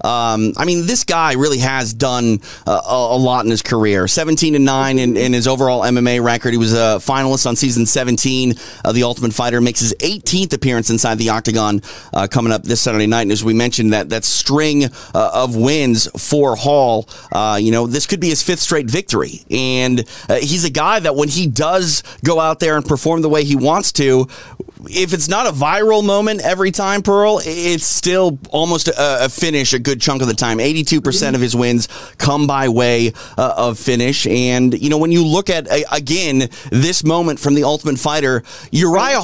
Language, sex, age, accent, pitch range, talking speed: English, male, 30-49, American, 120-160 Hz, 200 wpm